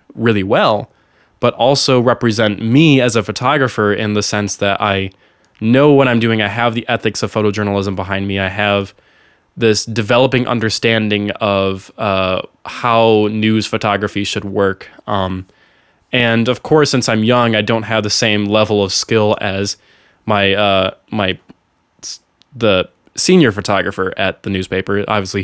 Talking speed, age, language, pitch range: 150 wpm, 20-39, English, 100-115 Hz